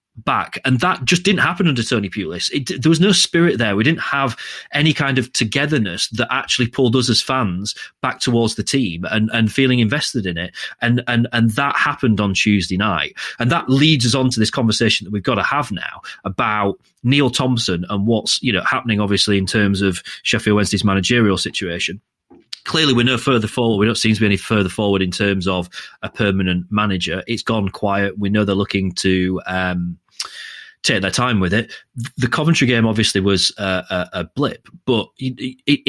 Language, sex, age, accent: English, male, 30-49, British